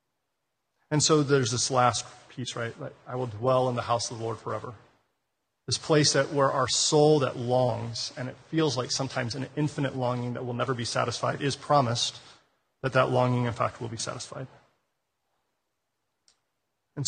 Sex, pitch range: male, 120-135 Hz